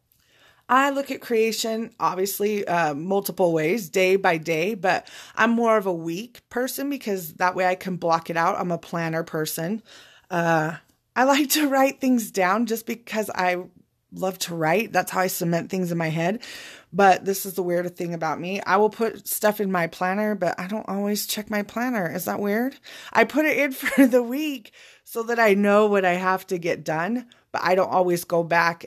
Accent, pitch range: American, 175-225 Hz